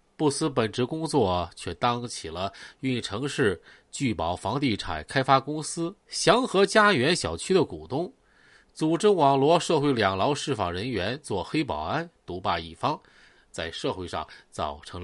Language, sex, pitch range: Chinese, male, 130-190 Hz